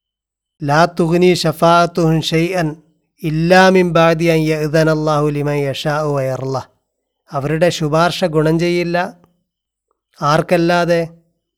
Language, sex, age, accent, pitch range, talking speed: Malayalam, male, 30-49, native, 150-170 Hz, 85 wpm